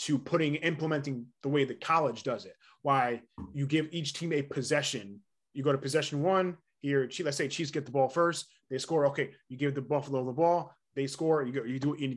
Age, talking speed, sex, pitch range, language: 20-39, 215 wpm, male, 130-155 Hz, English